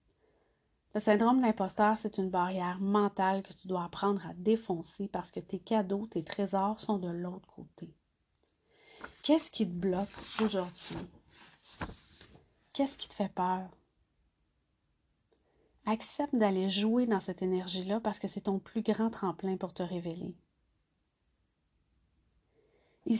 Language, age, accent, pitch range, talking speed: French, 30-49, Canadian, 185-215 Hz, 130 wpm